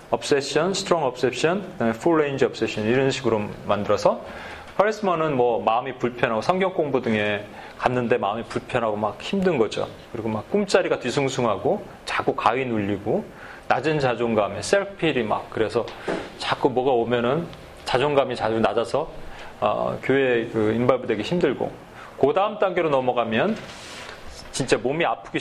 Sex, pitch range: male, 115-160 Hz